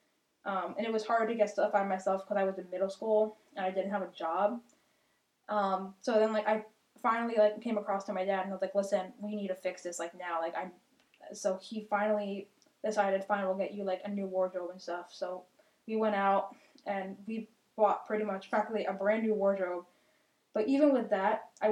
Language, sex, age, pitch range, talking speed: English, female, 10-29, 190-215 Hz, 225 wpm